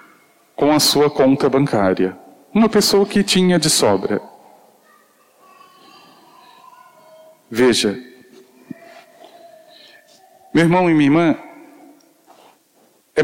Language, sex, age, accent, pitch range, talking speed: Portuguese, male, 40-59, Brazilian, 140-190 Hz, 80 wpm